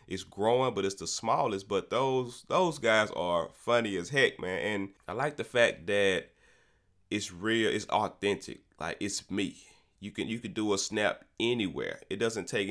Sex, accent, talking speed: male, American, 185 wpm